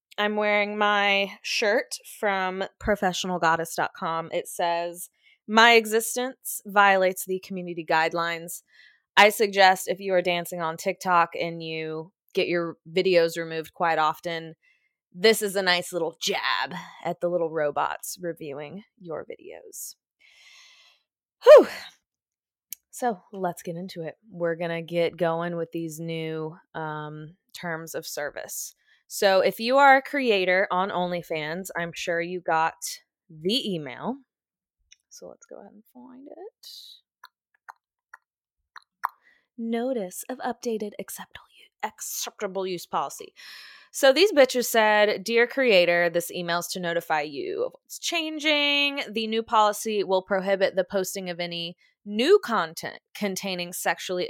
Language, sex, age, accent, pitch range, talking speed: English, female, 20-39, American, 170-235 Hz, 125 wpm